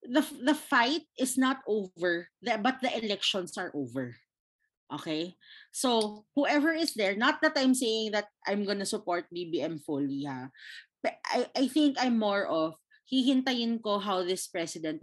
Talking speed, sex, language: 160 wpm, female, Filipino